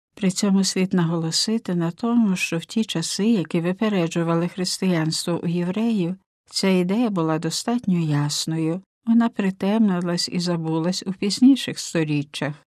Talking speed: 125 wpm